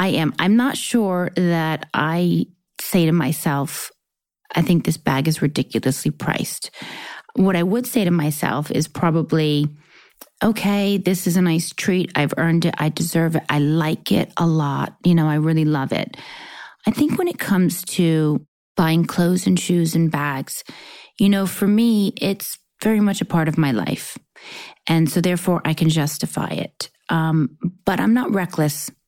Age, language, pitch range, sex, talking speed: 30-49, English, 160-200 Hz, female, 170 wpm